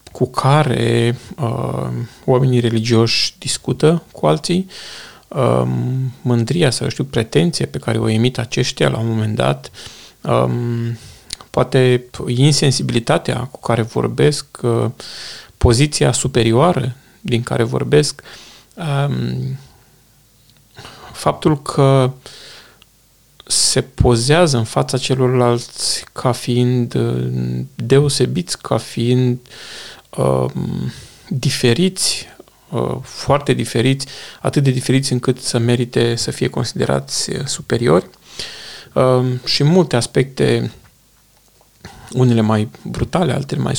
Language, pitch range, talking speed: Romanian, 115-140 Hz, 95 wpm